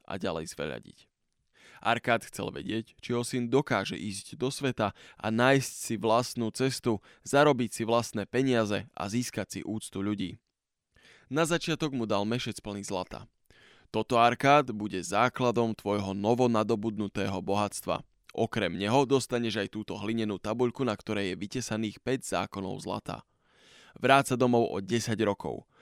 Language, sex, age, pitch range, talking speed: Slovak, male, 20-39, 105-125 Hz, 135 wpm